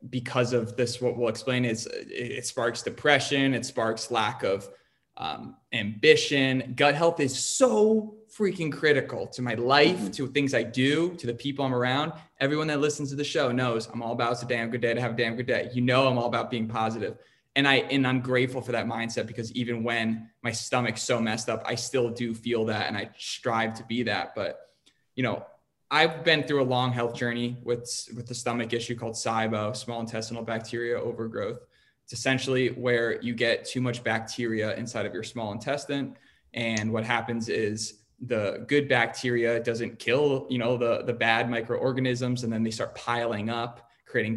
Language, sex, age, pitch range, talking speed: English, male, 20-39, 115-130 Hz, 195 wpm